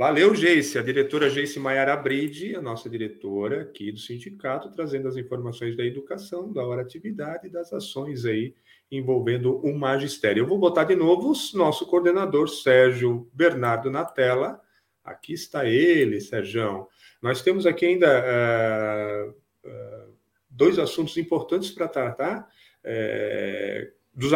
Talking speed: 130 wpm